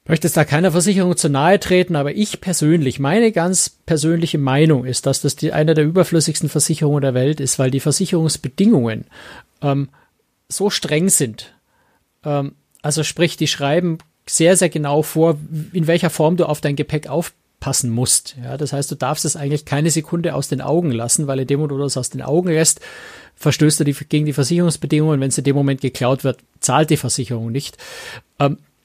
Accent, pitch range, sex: German, 135-165 Hz, male